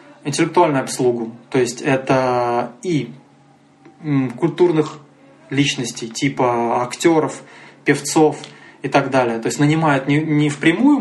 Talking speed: 110 wpm